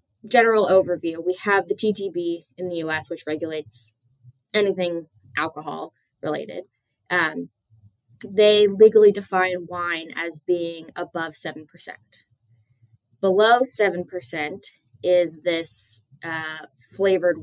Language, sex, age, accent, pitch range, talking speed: English, female, 20-39, American, 160-200 Hz, 100 wpm